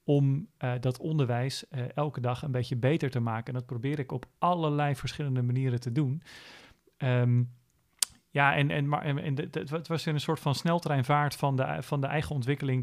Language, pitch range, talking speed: Dutch, 125-145 Hz, 200 wpm